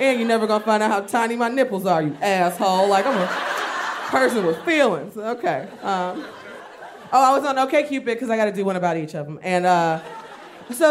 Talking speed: 215 wpm